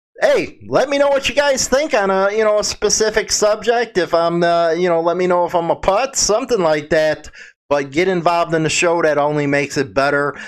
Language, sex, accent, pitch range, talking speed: English, male, American, 135-170 Hz, 235 wpm